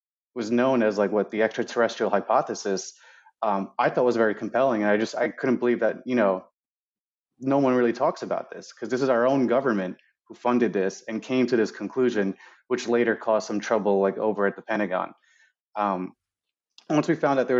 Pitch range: 105-125 Hz